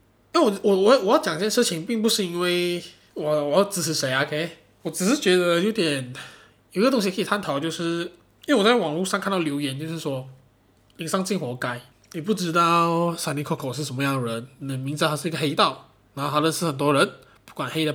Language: Chinese